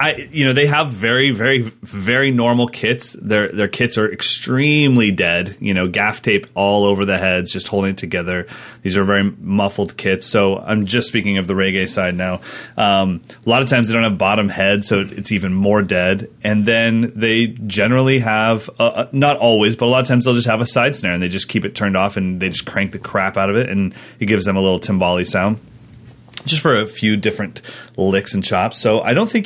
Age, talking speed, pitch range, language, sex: 30-49, 230 wpm, 100-120 Hz, English, male